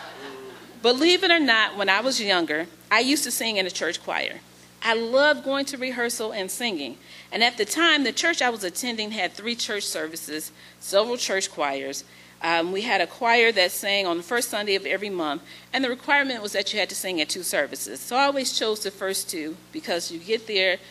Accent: American